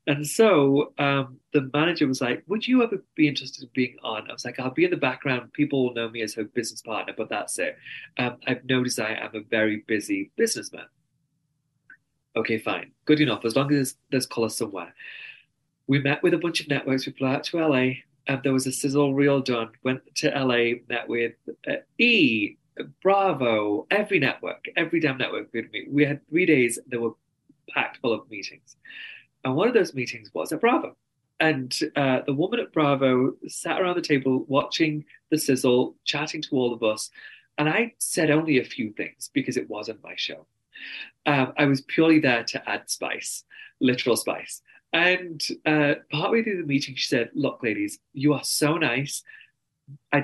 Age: 30-49